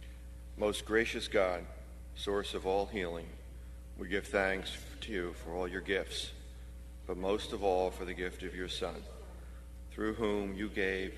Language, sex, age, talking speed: English, male, 40-59, 160 wpm